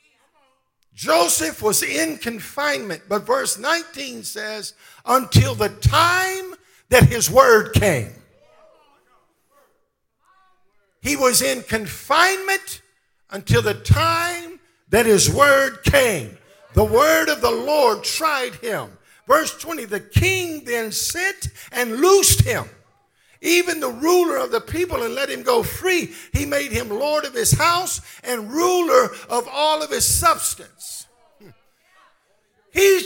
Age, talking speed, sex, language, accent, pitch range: 50-69, 125 wpm, male, English, American, 270-370 Hz